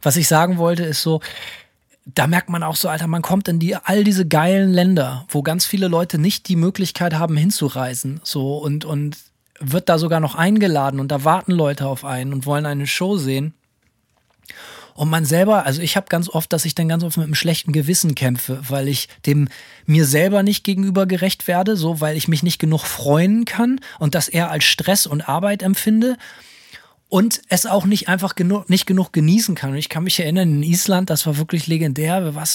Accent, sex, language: German, male, German